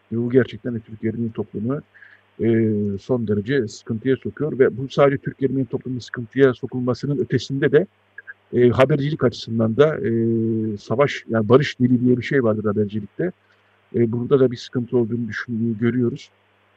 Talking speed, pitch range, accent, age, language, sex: 145 wpm, 110-125 Hz, native, 50-69, Turkish, male